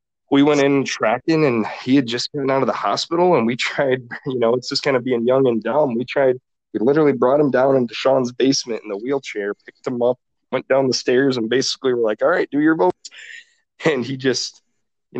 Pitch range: 115-135 Hz